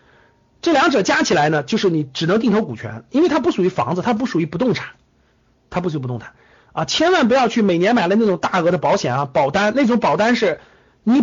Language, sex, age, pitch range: Chinese, male, 50-69, 180-270 Hz